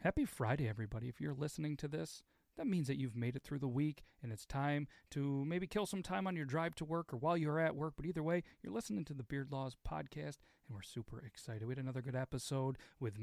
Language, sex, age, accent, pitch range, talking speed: English, male, 40-59, American, 125-180 Hz, 250 wpm